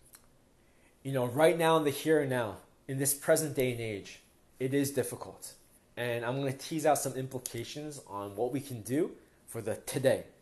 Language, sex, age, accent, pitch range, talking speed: English, male, 20-39, American, 110-160 Hz, 195 wpm